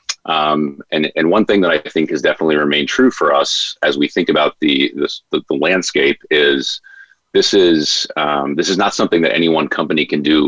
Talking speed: 205 wpm